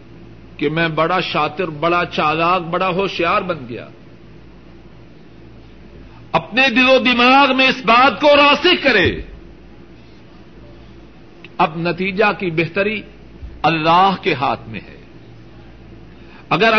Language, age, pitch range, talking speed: Urdu, 60-79, 165-240 Hz, 105 wpm